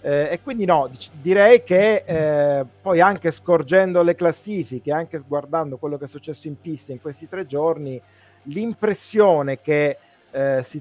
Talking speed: 155 wpm